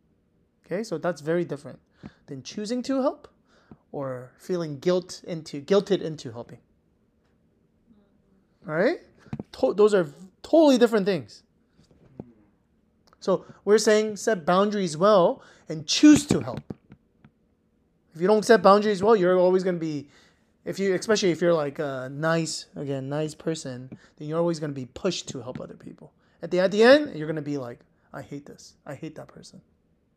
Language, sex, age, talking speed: English, male, 30-49, 170 wpm